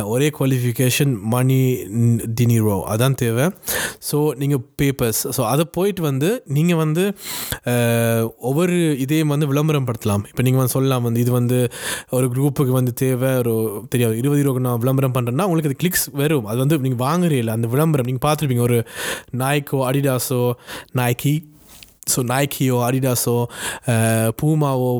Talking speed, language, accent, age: 140 wpm, Tamil, native, 20-39